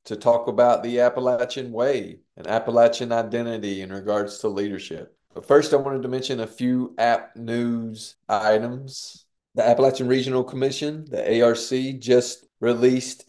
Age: 30-49